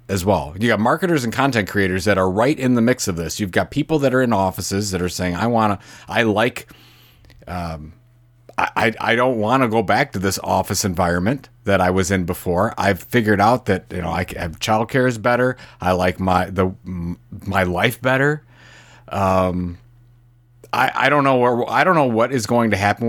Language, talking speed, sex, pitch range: English, 210 wpm, male, 90-120 Hz